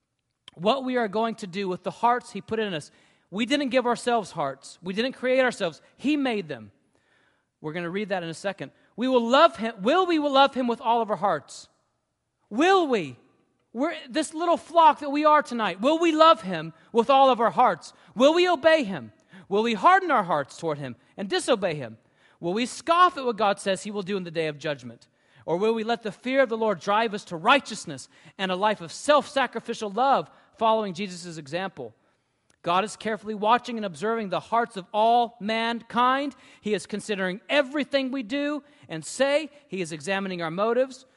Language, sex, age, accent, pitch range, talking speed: English, male, 40-59, American, 180-255 Hz, 205 wpm